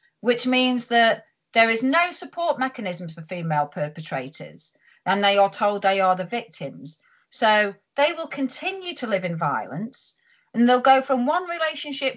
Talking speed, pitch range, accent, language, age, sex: 165 wpm, 185-270 Hz, British, English, 40-59, female